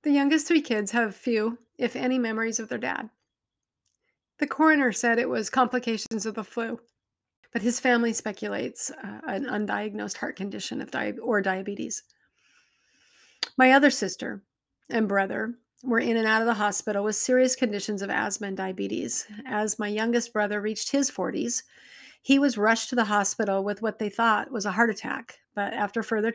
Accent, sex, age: American, female, 40-59